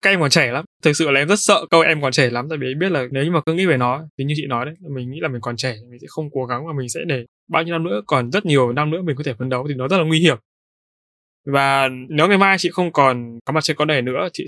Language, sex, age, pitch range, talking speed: Vietnamese, male, 20-39, 135-180 Hz, 340 wpm